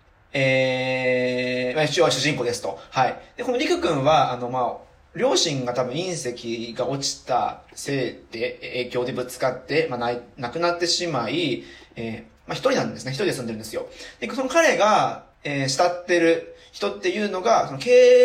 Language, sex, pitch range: Japanese, male, 125-200 Hz